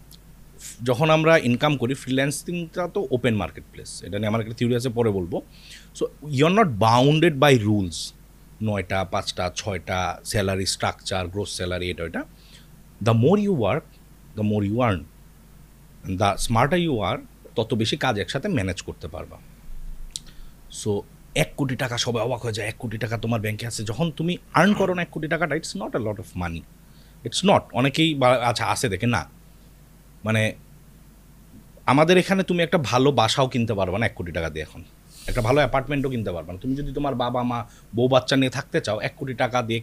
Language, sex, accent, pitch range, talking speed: Bengali, male, native, 105-150 Hz, 180 wpm